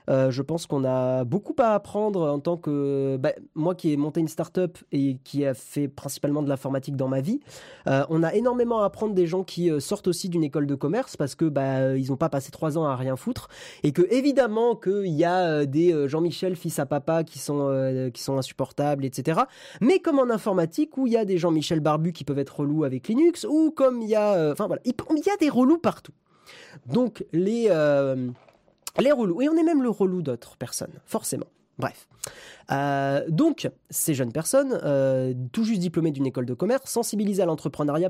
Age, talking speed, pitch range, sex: 20-39, 215 wpm, 145-220 Hz, male